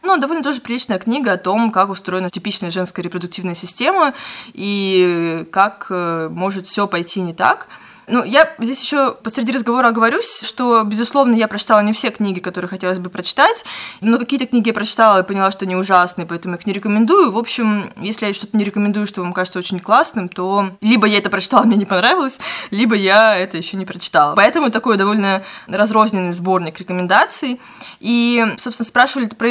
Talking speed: 180 wpm